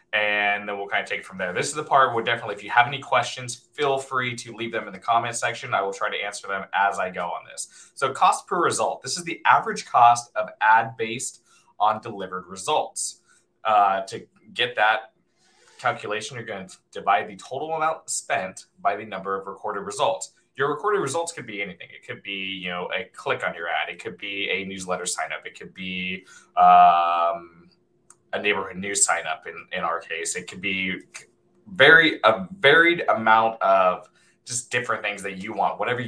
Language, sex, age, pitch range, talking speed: English, male, 20-39, 100-135 Hz, 210 wpm